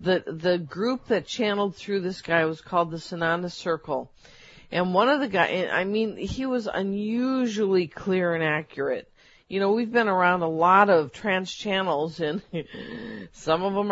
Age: 50-69